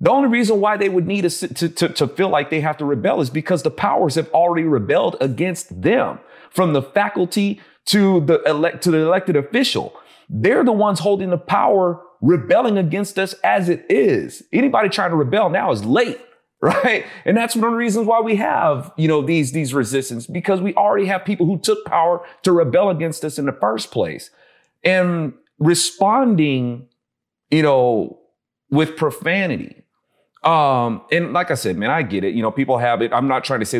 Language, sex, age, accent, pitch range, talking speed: English, male, 30-49, American, 145-200 Hz, 195 wpm